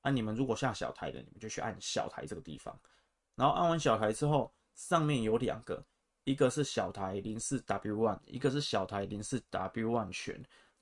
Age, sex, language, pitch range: 20-39, male, Chinese, 105-130 Hz